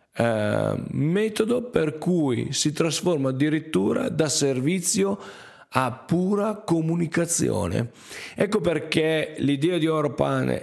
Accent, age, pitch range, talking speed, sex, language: native, 40-59, 130-170 Hz, 100 wpm, male, Italian